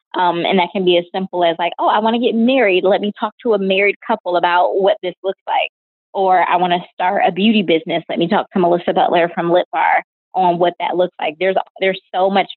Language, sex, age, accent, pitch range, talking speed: English, female, 20-39, American, 175-210 Hz, 255 wpm